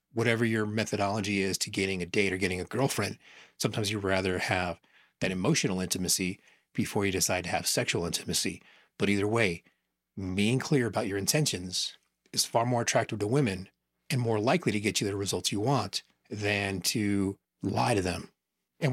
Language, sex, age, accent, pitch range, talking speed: English, male, 30-49, American, 100-130 Hz, 180 wpm